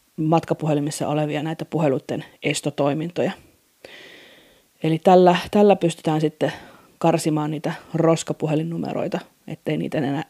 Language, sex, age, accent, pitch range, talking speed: Finnish, female, 20-39, native, 155-175 Hz, 95 wpm